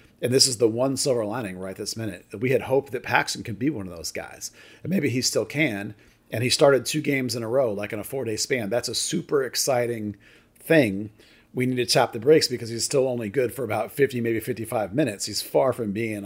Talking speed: 245 wpm